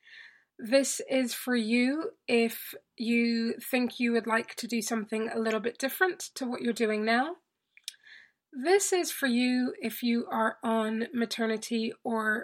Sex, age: female, 20-39